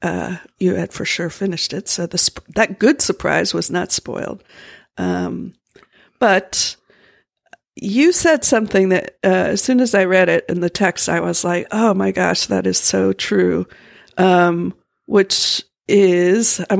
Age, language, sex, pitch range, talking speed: 50-69, English, female, 180-225 Hz, 165 wpm